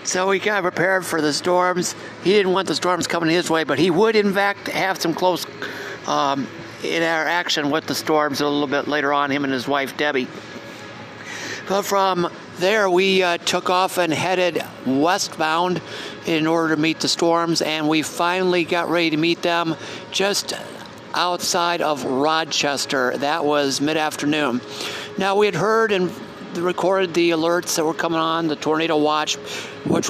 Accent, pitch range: American, 150-180 Hz